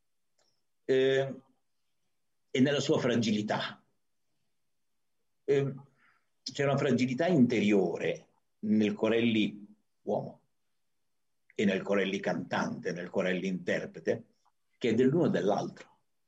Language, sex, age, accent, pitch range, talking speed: Italian, male, 50-69, native, 105-140 Hz, 90 wpm